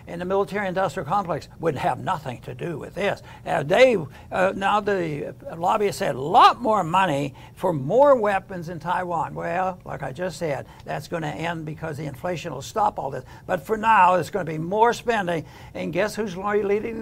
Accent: American